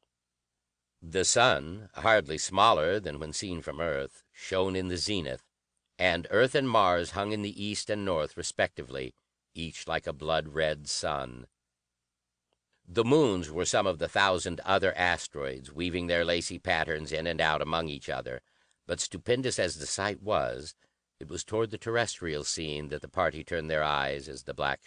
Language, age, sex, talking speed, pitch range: English, 60-79, male, 165 wpm, 70-100 Hz